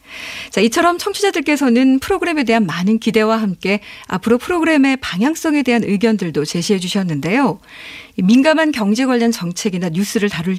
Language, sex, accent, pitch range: Korean, female, native, 200-265 Hz